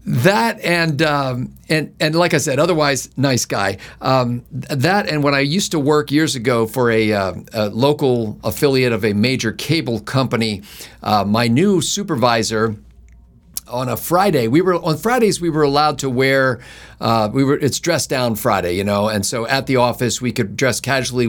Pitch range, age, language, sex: 115-145 Hz, 50-69, English, male